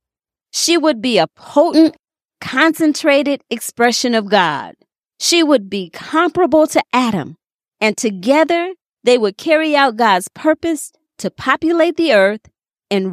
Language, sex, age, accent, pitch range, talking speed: English, female, 40-59, American, 185-290 Hz, 130 wpm